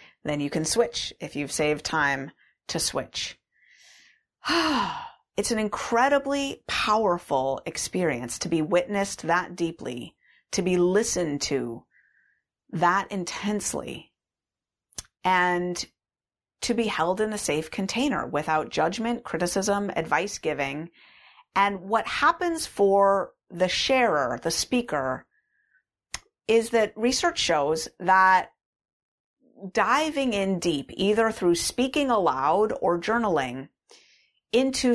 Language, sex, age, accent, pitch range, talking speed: English, female, 30-49, American, 165-230 Hz, 105 wpm